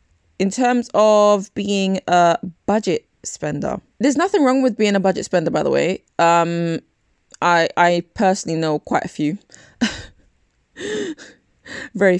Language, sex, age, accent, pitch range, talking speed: English, female, 20-39, British, 175-245 Hz, 135 wpm